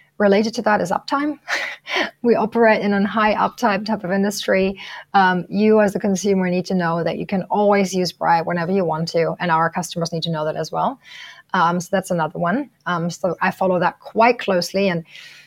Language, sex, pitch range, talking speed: English, female, 175-225 Hz, 210 wpm